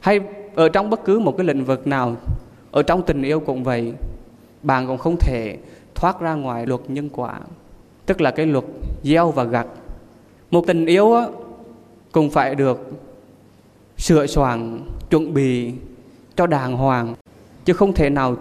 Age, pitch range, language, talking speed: 20-39, 125-170 Hz, Vietnamese, 165 wpm